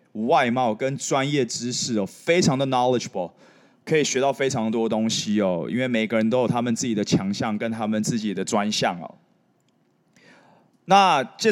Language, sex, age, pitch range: Chinese, male, 20-39, 125-200 Hz